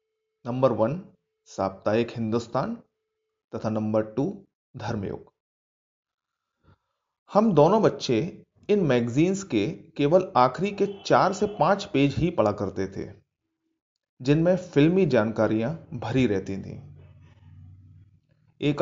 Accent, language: native, Hindi